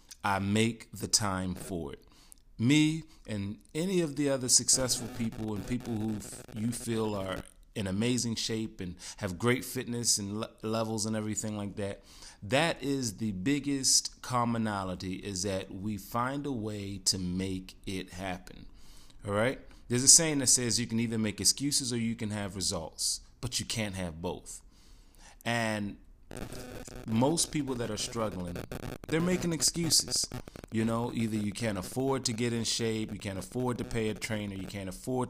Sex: male